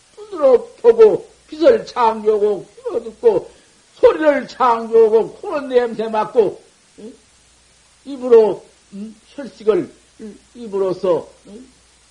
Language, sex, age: Korean, male, 50-69